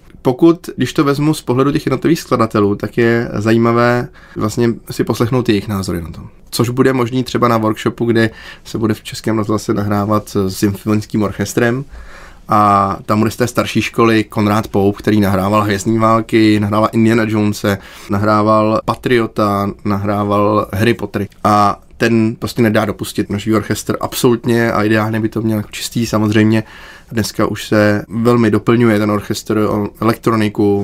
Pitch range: 105-115 Hz